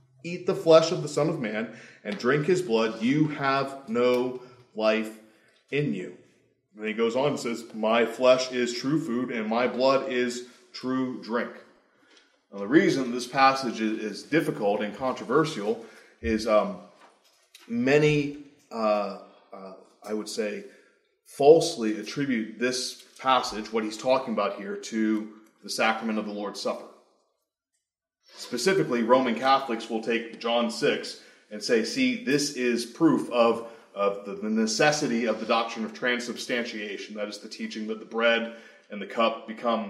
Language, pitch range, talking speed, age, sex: English, 110-145 Hz, 150 wpm, 20-39, male